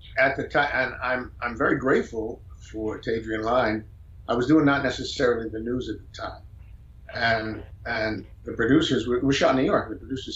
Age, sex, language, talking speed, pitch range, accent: 50-69, male, English, 195 wpm, 100-120 Hz, American